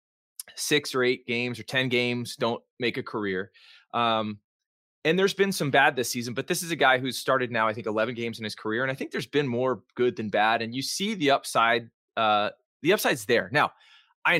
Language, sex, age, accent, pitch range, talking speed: English, male, 20-39, American, 110-145 Hz, 225 wpm